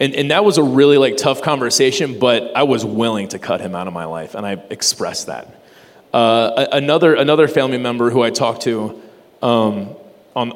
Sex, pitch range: male, 115-145 Hz